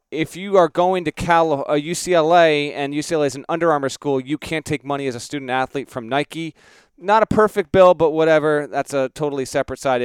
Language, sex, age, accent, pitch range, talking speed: English, male, 30-49, American, 125-165 Hz, 210 wpm